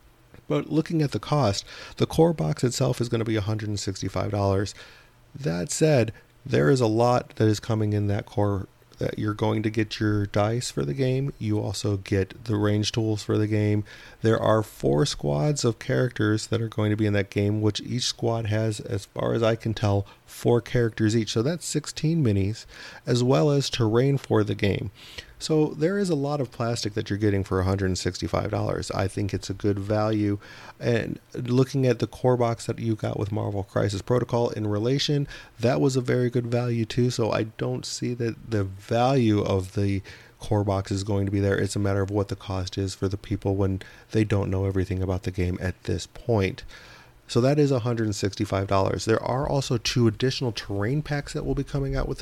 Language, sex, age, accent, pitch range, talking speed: English, male, 40-59, American, 100-125 Hz, 205 wpm